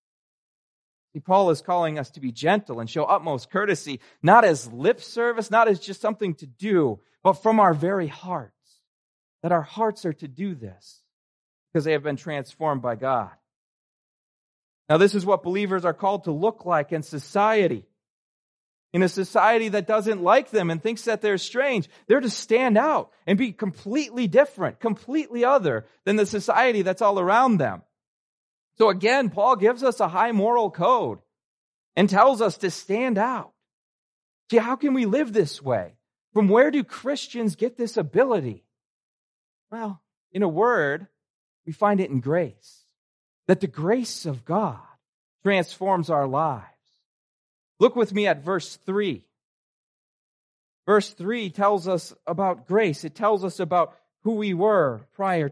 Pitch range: 165-220 Hz